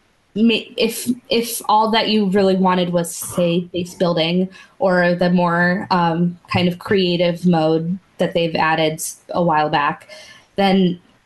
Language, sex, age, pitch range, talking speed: English, female, 20-39, 175-215 Hz, 140 wpm